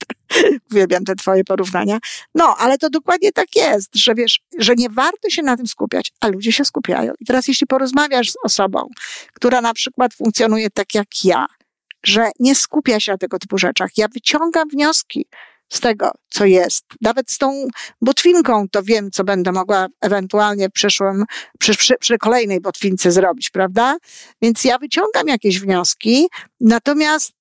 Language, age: Polish, 50-69